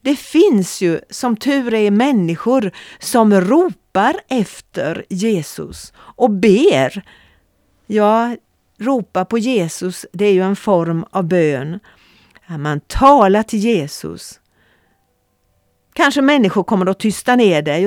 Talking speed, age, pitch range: 120 wpm, 40-59, 160-230 Hz